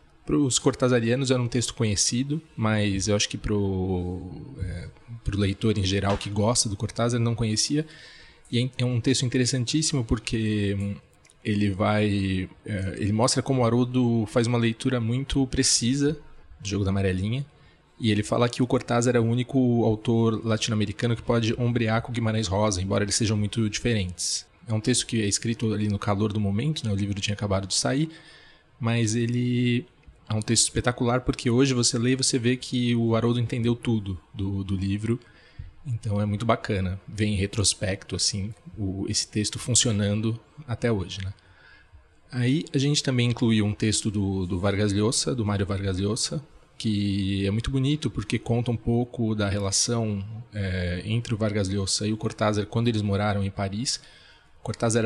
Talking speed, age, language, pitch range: 180 wpm, 20-39, Portuguese, 100-120 Hz